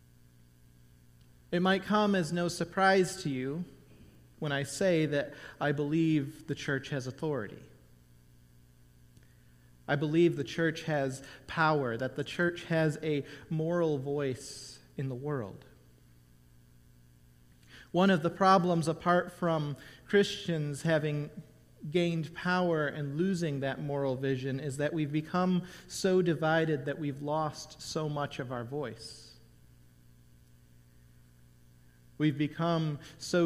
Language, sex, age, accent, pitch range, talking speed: English, male, 40-59, American, 130-165 Hz, 120 wpm